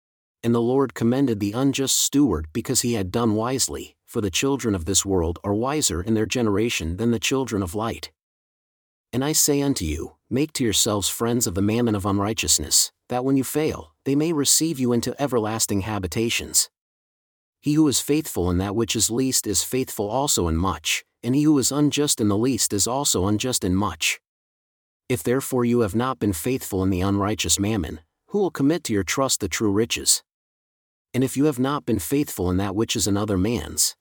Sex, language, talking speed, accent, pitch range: male, English, 200 wpm, American, 100-135 Hz